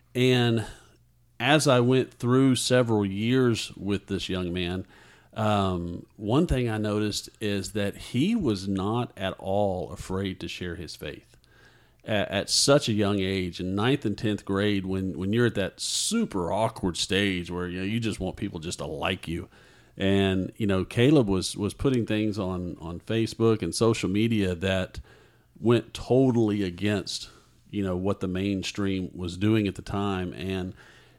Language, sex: English, male